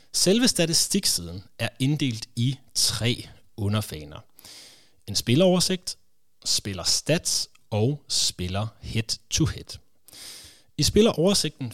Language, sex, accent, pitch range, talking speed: Danish, male, native, 105-150 Hz, 90 wpm